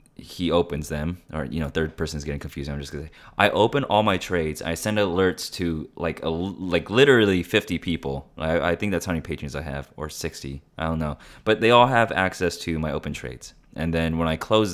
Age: 20-39